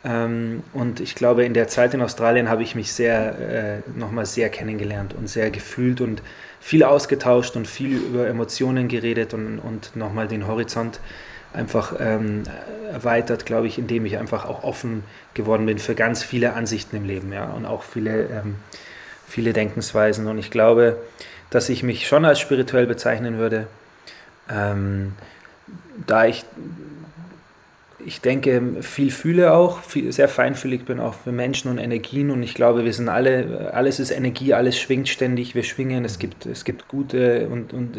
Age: 20-39